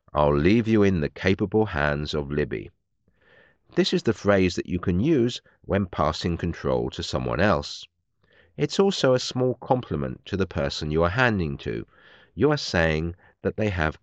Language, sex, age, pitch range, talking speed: English, male, 50-69, 75-110 Hz, 175 wpm